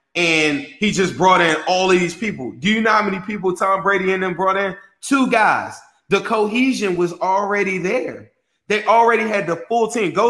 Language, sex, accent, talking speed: English, male, American, 205 wpm